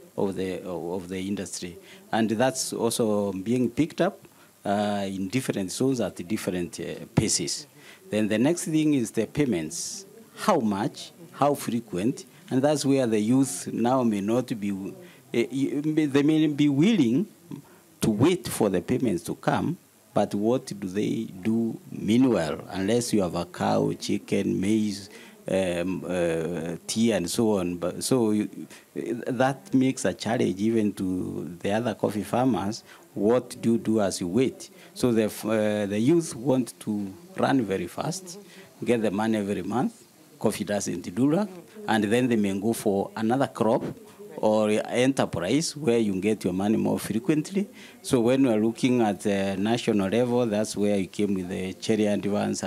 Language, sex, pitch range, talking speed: English, male, 100-130 Hz, 165 wpm